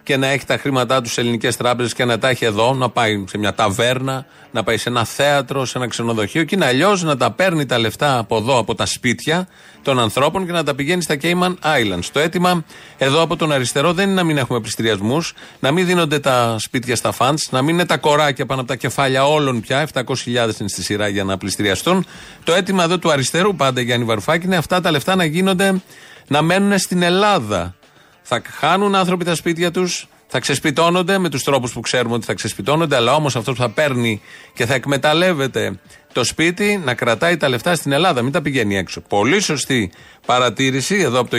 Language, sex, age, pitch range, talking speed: Greek, male, 30-49, 120-175 Hz, 215 wpm